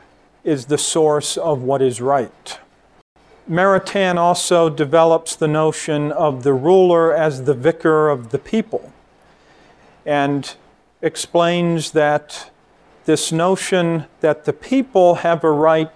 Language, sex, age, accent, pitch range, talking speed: English, male, 50-69, American, 150-170 Hz, 120 wpm